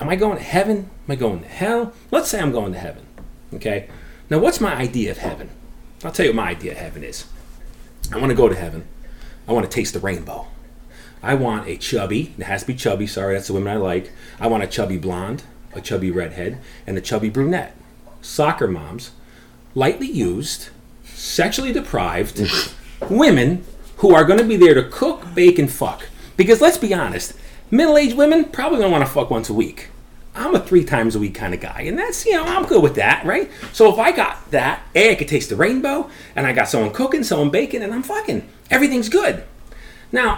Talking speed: 215 wpm